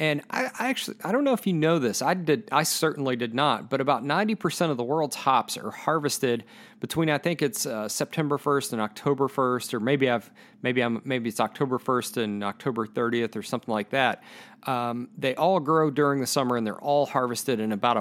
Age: 40-59